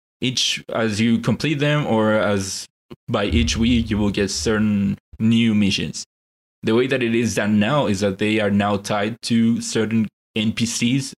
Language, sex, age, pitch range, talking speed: English, male, 20-39, 105-120 Hz, 170 wpm